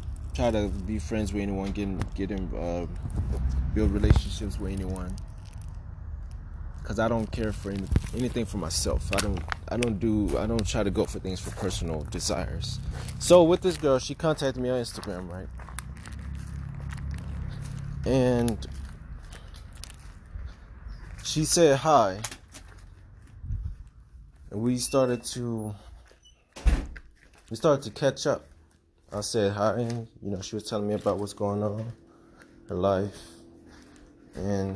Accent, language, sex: American, English, male